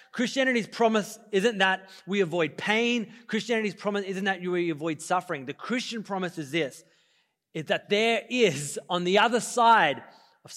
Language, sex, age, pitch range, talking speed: English, male, 30-49, 175-230 Hz, 160 wpm